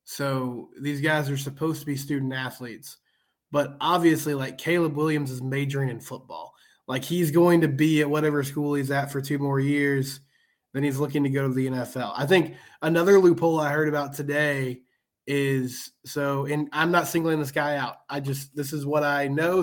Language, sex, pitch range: English, male, 140-165 Hz